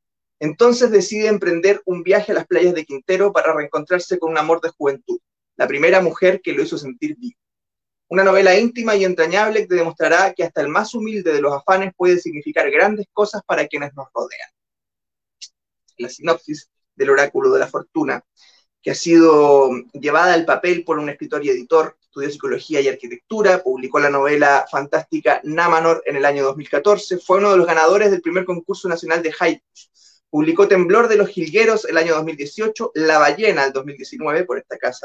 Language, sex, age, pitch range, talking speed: Spanish, male, 20-39, 155-205 Hz, 180 wpm